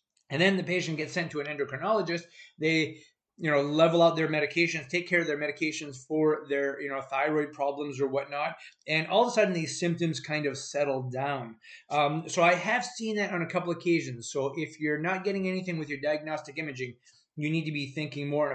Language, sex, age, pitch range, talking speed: English, male, 30-49, 140-180 Hz, 220 wpm